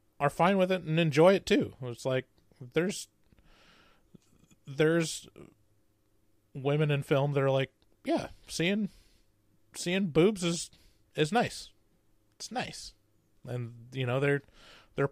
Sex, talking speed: male, 125 wpm